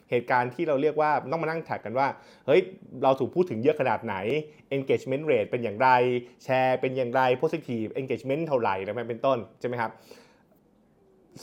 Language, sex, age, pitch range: Thai, male, 20-39, 115-135 Hz